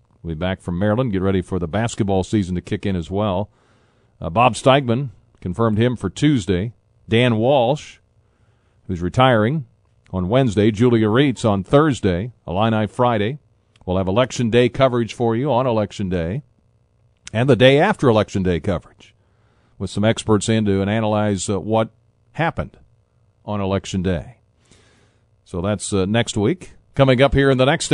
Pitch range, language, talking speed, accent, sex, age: 100-120 Hz, English, 160 wpm, American, male, 40-59